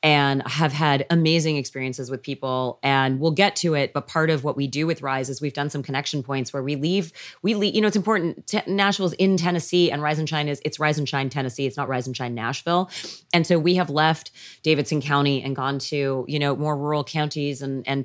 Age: 30-49